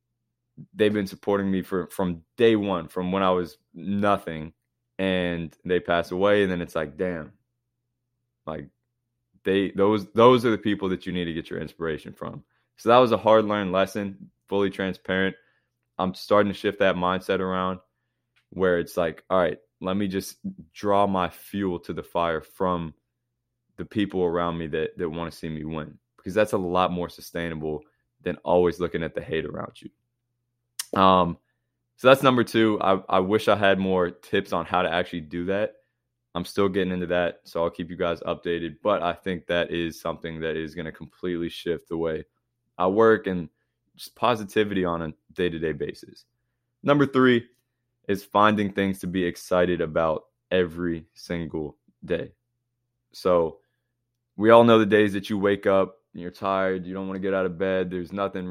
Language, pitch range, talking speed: English, 85-110 Hz, 185 wpm